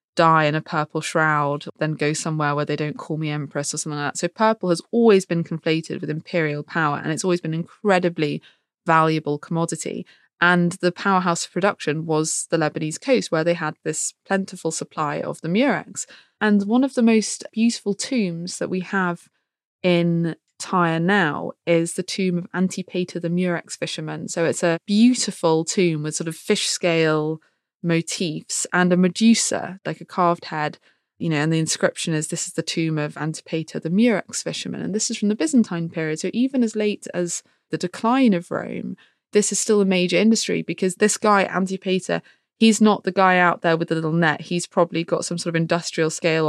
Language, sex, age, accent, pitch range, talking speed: English, female, 20-39, British, 160-200 Hz, 195 wpm